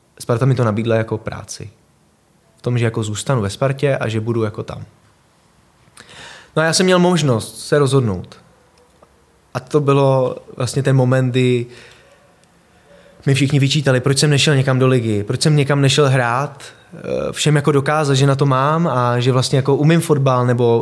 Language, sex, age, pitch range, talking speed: Czech, male, 20-39, 120-145 Hz, 175 wpm